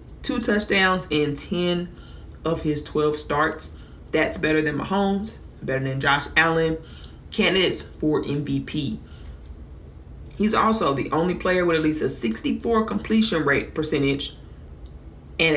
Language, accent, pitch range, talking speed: English, American, 140-175 Hz, 125 wpm